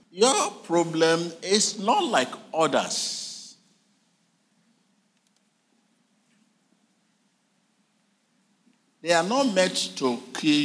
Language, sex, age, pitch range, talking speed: English, male, 50-69, 170-225 Hz, 70 wpm